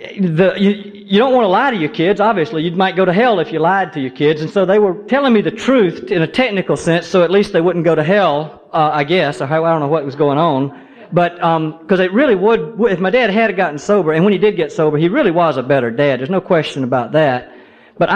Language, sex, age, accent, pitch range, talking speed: English, male, 40-59, American, 150-205 Hz, 270 wpm